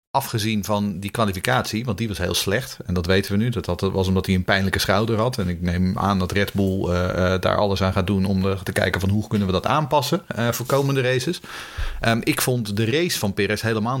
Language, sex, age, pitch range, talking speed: Dutch, male, 40-59, 95-120 Hz, 245 wpm